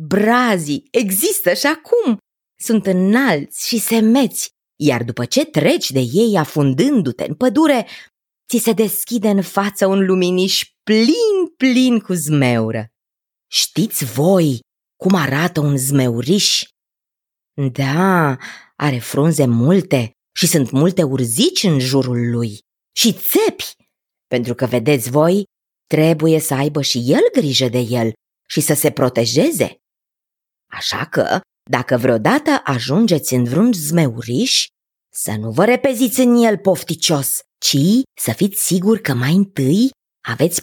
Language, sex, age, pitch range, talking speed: Romanian, female, 20-39, 135-220 Hz, 125 wpm